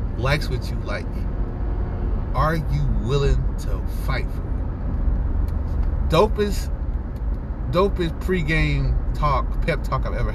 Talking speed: 110 wpm